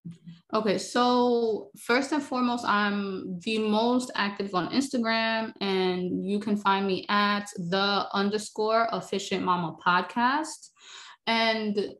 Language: English